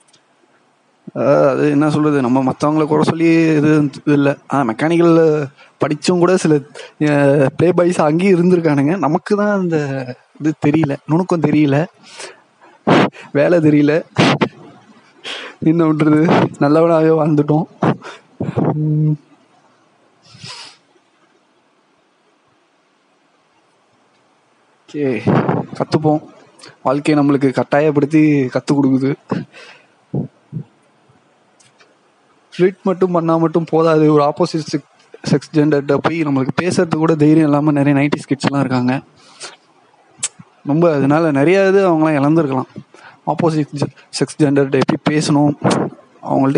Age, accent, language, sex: 20-39, native, Tamil, male